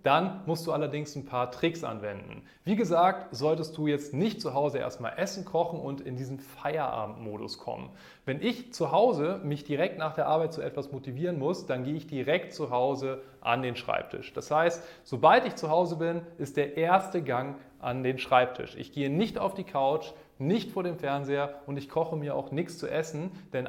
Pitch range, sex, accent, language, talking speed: 135-170 Hz, male, German, German, 200 wpm